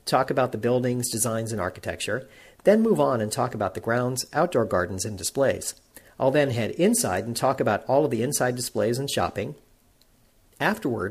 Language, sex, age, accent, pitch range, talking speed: English, male, 50-69, American, 110-150 Hz, 185 wpm